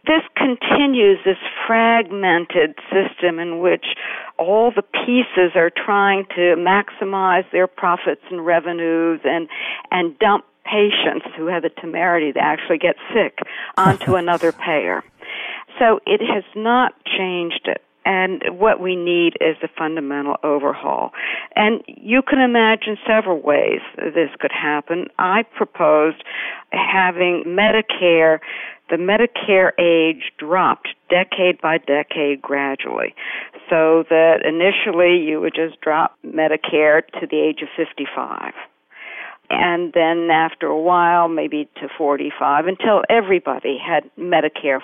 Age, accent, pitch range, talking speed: 60-79, American, 160-200 Hz, 125 wpm